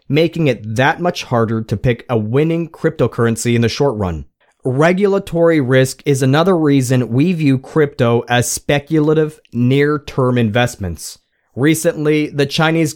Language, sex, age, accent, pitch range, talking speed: English, male, 40-59, American, 125-155 Hz, 135 wpm